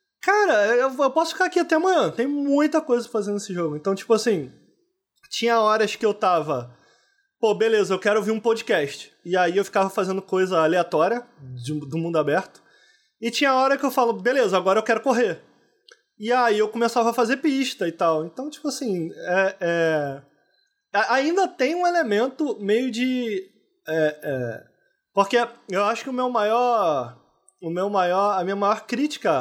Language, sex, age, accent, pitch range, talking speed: Portuguese, male, 20-39, Brazilian, 195-265 Hz, 170 wpm